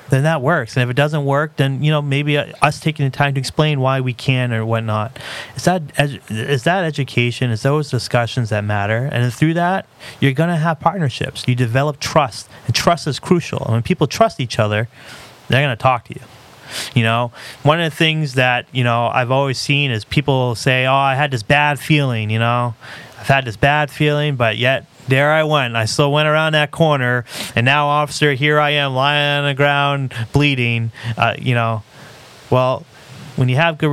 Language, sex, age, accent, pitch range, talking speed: English, male, 30-49, American, 115-145 Hz, 210 wpm